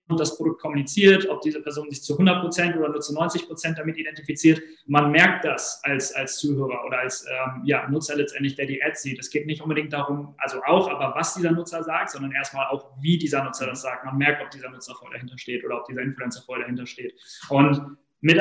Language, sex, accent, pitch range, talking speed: German, male, German, 145-170 Hz, 220 wpm